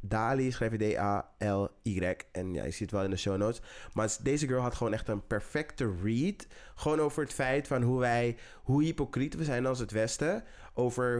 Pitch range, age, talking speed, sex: 105-130 Hz, 20-39, 205 wpm, male